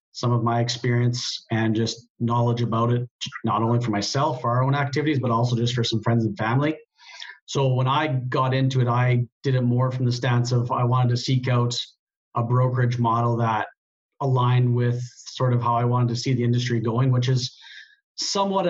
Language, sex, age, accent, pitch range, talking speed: English, male, 30-49, American, 115-130 Hz, 200 wpm